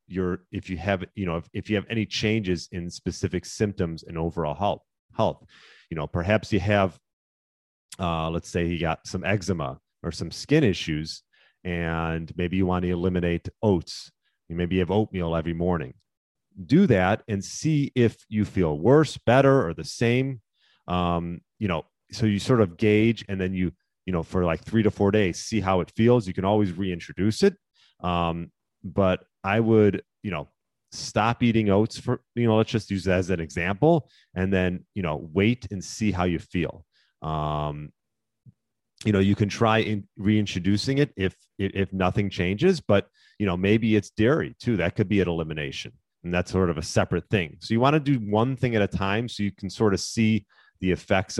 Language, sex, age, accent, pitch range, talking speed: English, male, 30-49, American, 90-110 Hz, 195 wpm